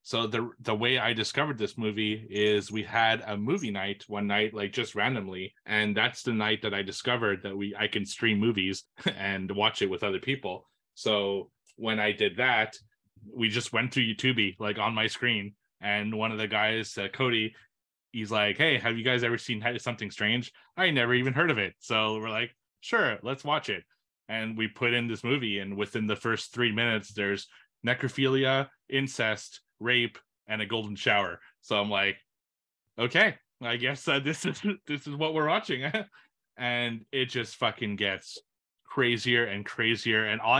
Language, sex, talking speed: English, male, 185 wpm